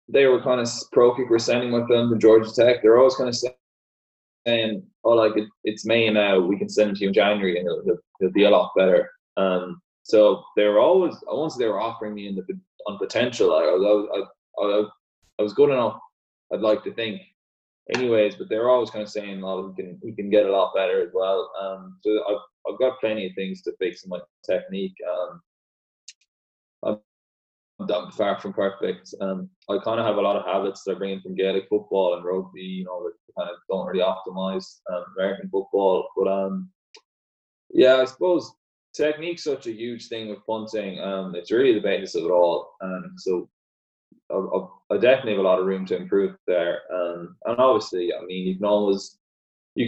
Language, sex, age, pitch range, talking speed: English, male, 20-39, 95-130 Hz, 205 wpm